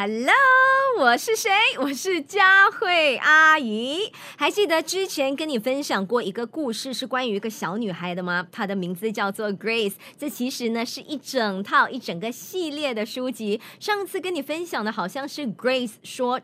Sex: male